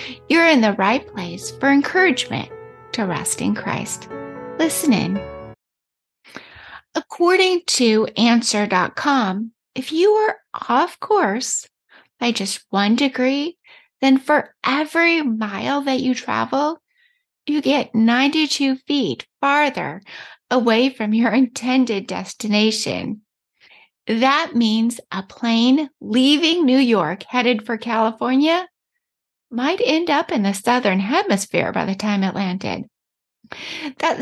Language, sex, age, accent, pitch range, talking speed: English, female, 30-49, American, 225-300 Hz, 115 wpm